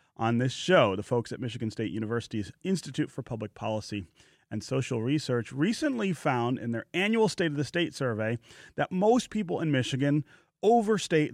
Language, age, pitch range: English, 30-49, 110-150 Hz